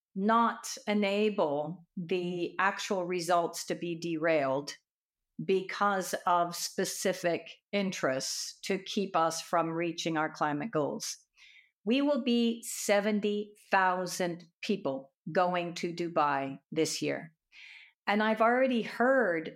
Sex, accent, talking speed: female, American, 105 wpm